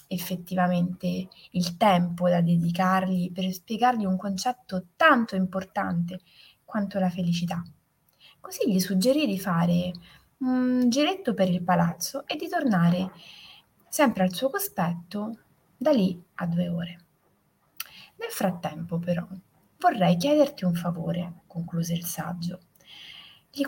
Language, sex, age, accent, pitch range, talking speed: Italian, female, 20-39, native, 175-215 Hz, 120 wpm